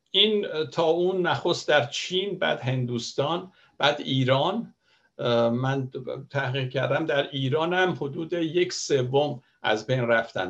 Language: Persian